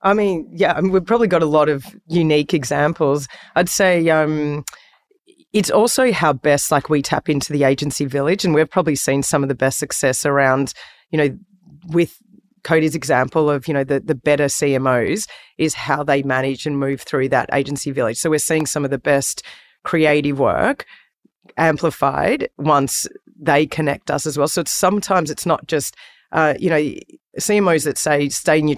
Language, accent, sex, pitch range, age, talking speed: English, Australian, female, 140-155 Hz, 30-49, 180 wpm